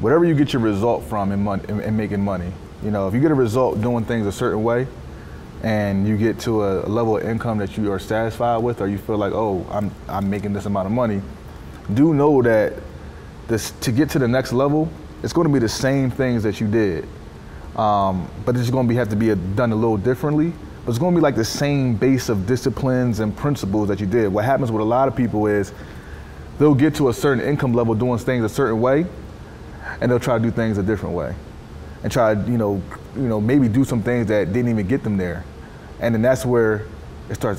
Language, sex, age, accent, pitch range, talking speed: English, male, 20-39, American, 100-130 Hz, 230 wpm